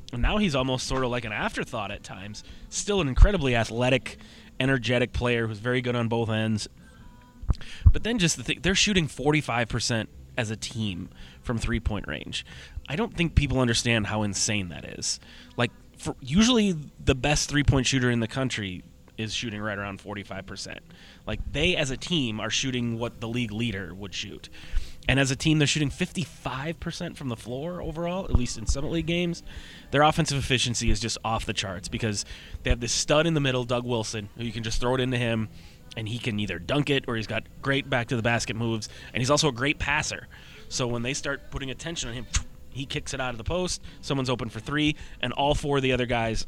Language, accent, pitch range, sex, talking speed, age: English, American, 110-140 Hz, male, 205 wpm, 30-49